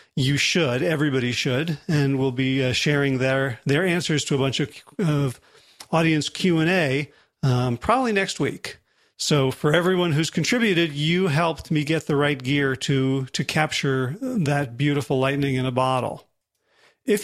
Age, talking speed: 40-59, 155 wpm